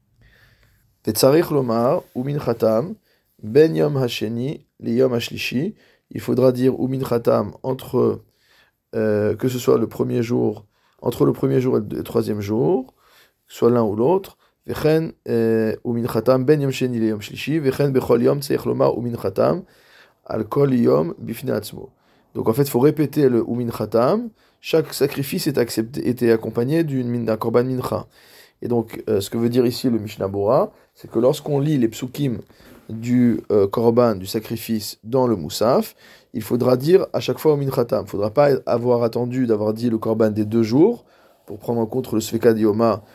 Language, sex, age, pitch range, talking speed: French, male, 20-39, 115-130 Hz, 130 wpm